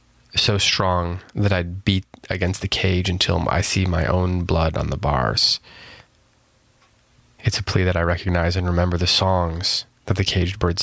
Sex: male